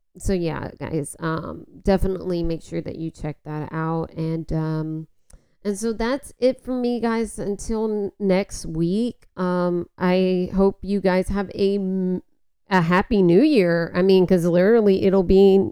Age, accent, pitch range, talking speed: 30-49, American, 165-200 Hz, 165 wpm